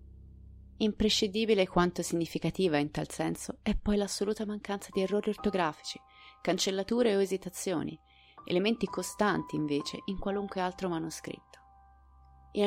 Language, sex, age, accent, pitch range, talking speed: Italian, female, 30-49, native, 155-200 Hz, 115 wpm